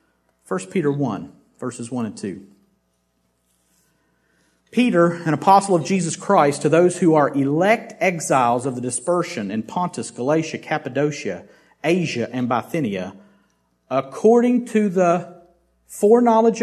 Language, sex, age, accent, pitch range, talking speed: English, male, 50-69, American, 125-180 Hz, 120 wpm